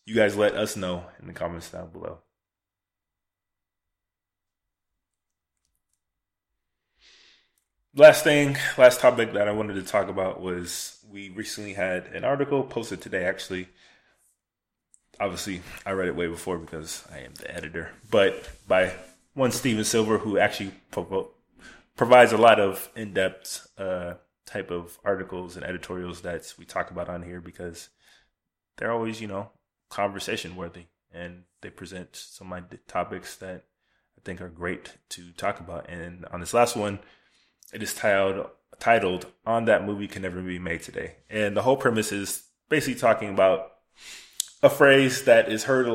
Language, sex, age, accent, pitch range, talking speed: English, male, 20-39, American, 90-105 Hz, 150 wpm